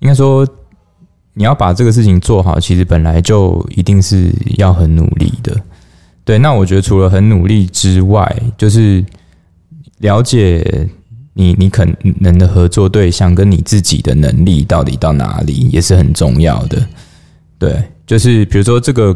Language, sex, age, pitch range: Chinese, male, 20-39, 90-105 Hz